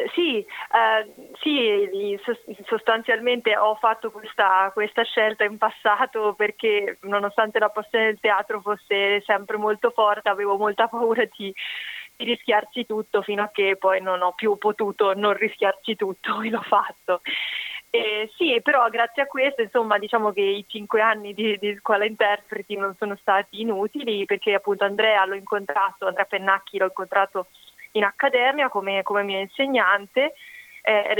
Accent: native